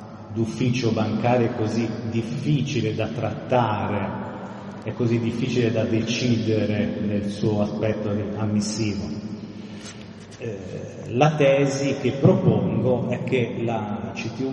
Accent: native